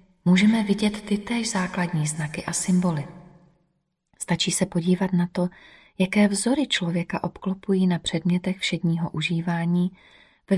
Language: Czech